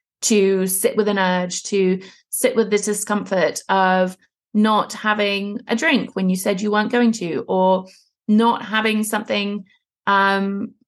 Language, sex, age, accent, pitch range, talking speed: English, female, 30-49, British, 195-240 Hz, 150 wpm